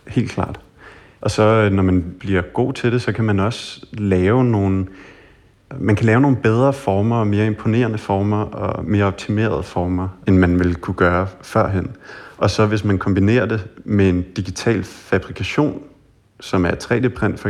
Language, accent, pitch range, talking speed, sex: Danish, native, 95-110 Hz, 170 wpm, male